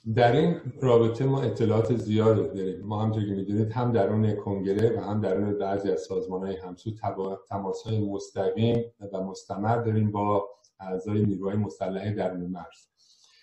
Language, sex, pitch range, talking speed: Persian, male, 95-115 Hz, 160 wpm